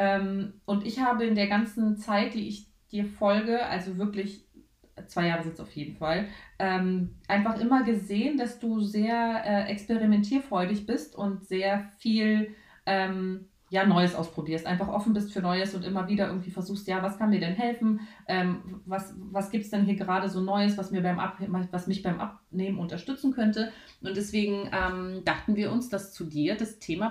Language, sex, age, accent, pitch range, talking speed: German, female, 30-49, German, 175-210 Hz, 185 wpm